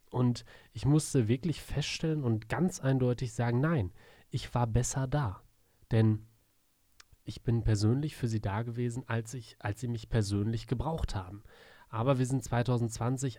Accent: German